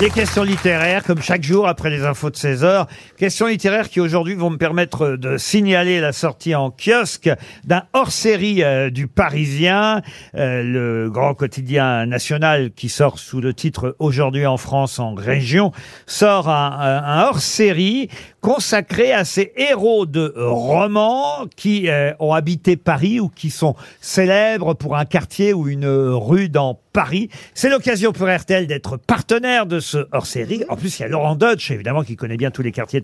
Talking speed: 175 wpm